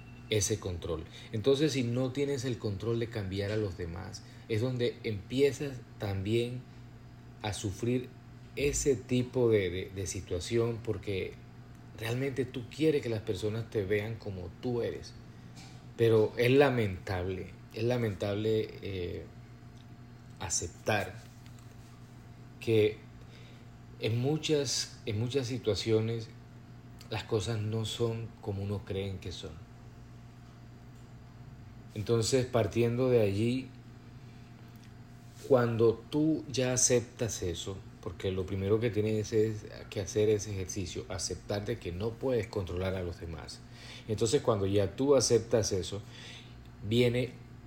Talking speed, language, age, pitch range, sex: 115 wpm, Spanish, 40-59, 105-120 Hz, male